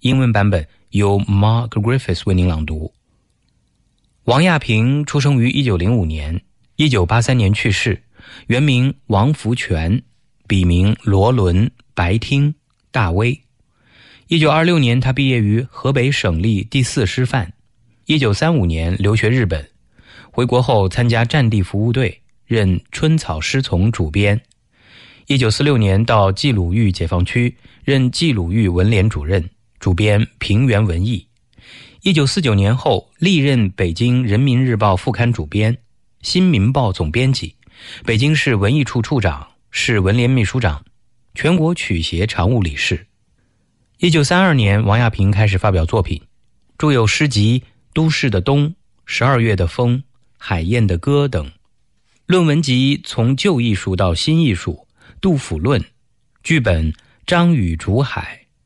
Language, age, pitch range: English, 30-49, 100-130 Hz